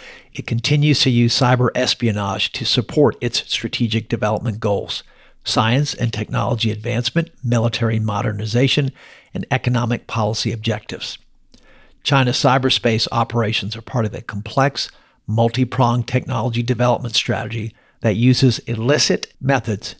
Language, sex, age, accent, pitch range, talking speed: English, male, 50-69, American, 110-125 Hz, 115 wpm